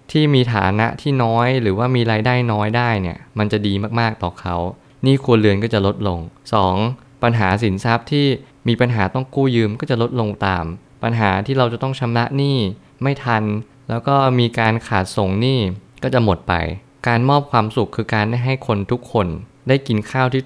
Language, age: Thai, 20-39